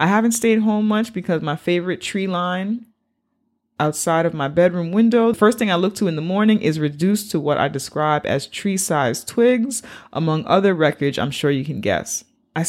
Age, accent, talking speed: 30-49, American, 200 wpm